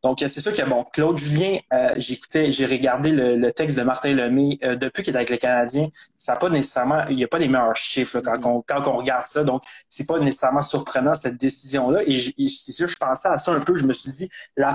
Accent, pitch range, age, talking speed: Canadian, 130-160 Hz, 20-39, 250 wpm